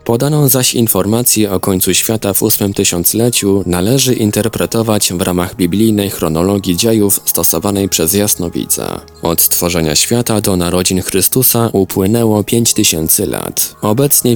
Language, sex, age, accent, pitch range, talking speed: Polish, male, 20-39, native, 90-110 Hz, 125 wpm